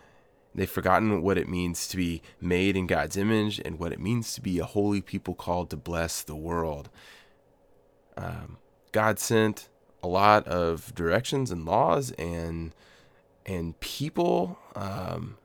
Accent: American